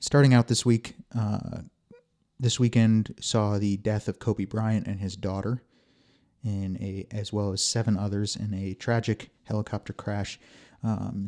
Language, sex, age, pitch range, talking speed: English, male, 30-49, 100-115 Hz, 155 wpm